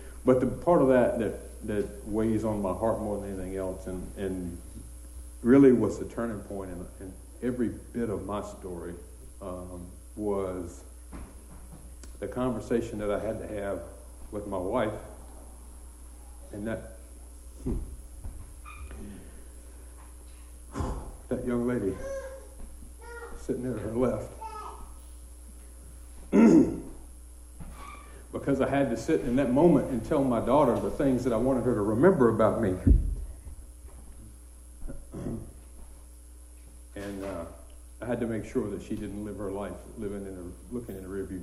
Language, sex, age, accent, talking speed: English, male, 60-79, American, 135 wpm